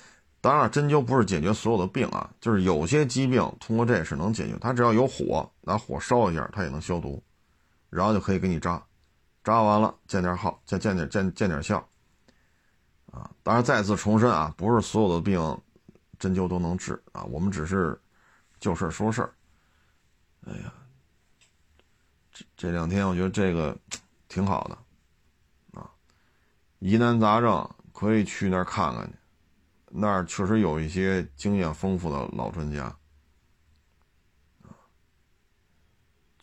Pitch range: 80-110 Hz